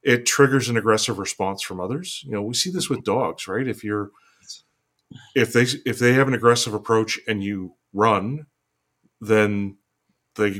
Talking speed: 170 wpm